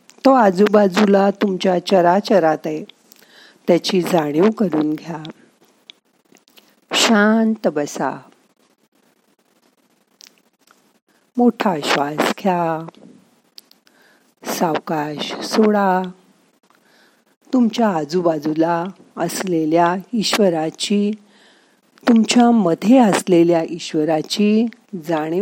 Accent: native